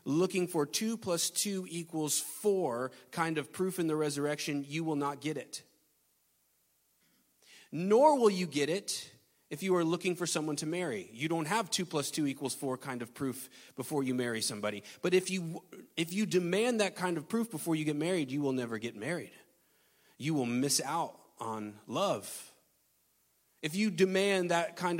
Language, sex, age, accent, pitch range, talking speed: English, male, 30-49, American, 125-175 Hz, 185 wpm